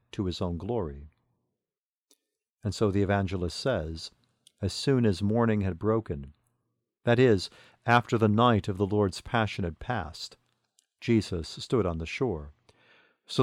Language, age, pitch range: English, 50-69, 95-120 Hz